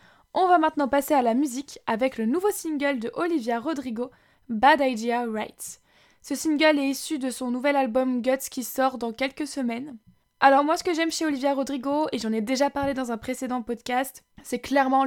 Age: 20-39